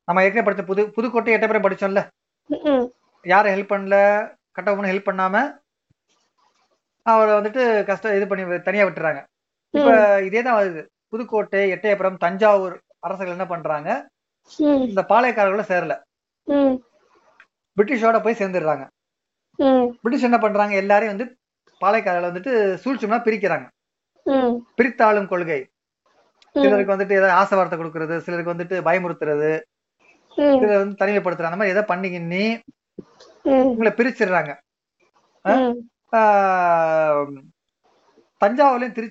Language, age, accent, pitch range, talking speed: Tamil, 30-49, native, 185-235 Hz, 85 wpm